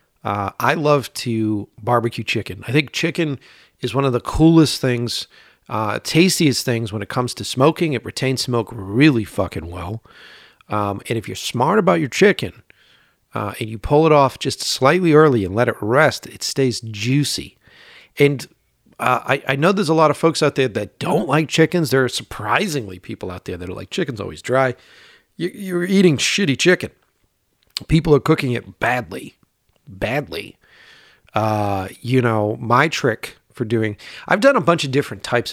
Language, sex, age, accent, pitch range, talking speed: English, male, 40-59, American, 110-145 Hz, 175 wpm